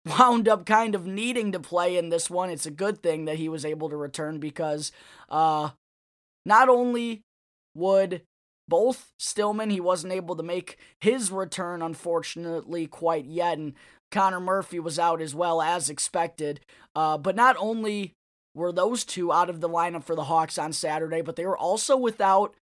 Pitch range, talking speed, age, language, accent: 160-190 Hz, 175 wpm, 20-39, English, American